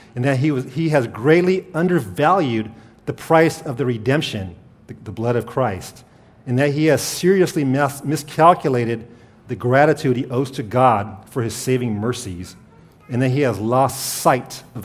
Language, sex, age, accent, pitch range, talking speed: English, male, 40-59, American, 110-135 Hz, 170 wpm